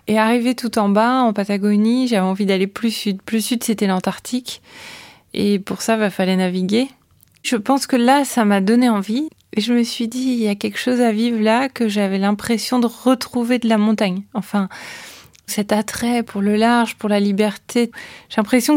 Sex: female